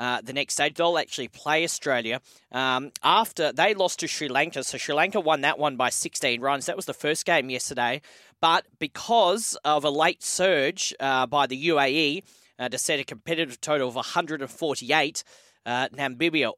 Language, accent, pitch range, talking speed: English, Australian, 130-160 Hz, 190 wpm